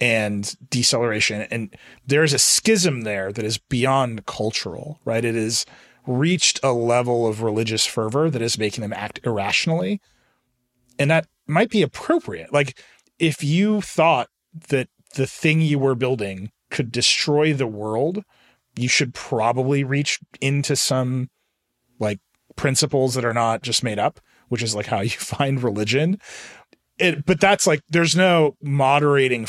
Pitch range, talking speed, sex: 115-150 Hz, 150 wpm, male